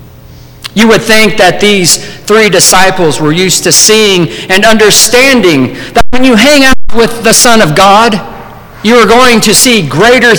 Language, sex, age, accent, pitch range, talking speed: English, male, 50-69, American, 190-250 Hz, 170 wpm